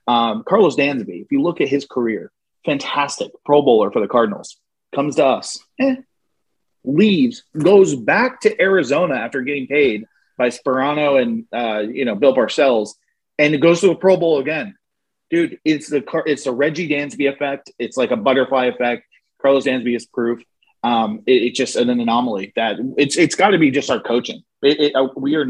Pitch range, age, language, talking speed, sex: 120-155 Hz, 30-49, English, 190 wpm, male